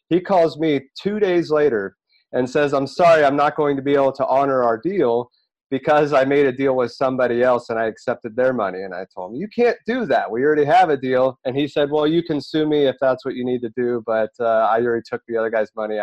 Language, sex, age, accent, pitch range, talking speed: English, male, 30-49, American, 120-155 Hz, 260 wpm